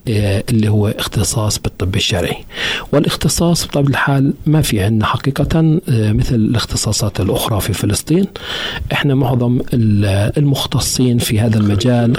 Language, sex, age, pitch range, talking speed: Arabic, male, 40-59, 105-135 Hz, 115 wpm